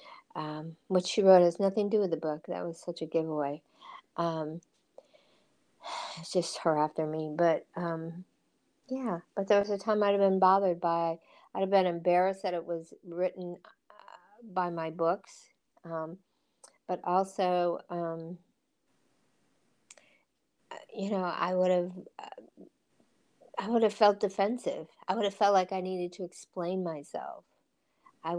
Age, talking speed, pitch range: 50-69, 150 wpm, 165-190 Hz